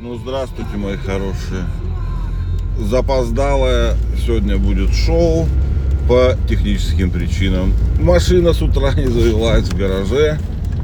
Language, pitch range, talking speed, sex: Russian, 85-110 Hz, 100 wpm, male